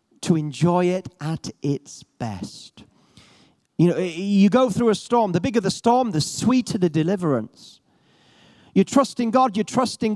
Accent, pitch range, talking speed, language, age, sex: British, 170-240 Hz, 155 wpm, English, 40-59, male